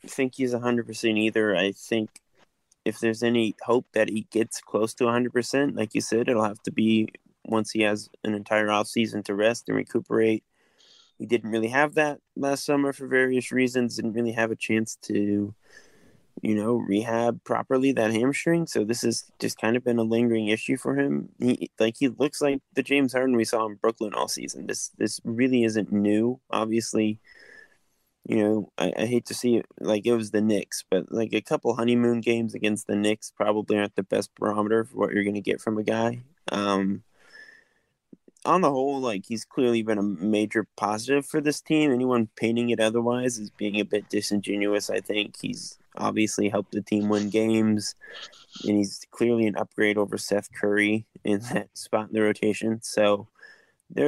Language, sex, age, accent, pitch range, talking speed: English, male, 20-39, American, 105-120 Hz, 195 wpm